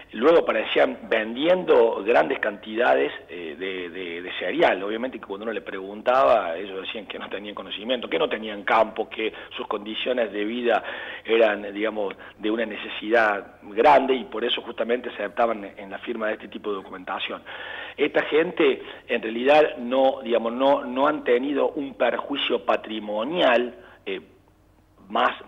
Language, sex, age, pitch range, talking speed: Spanish, male, 40-59, 100-120 Hz, 155 wpm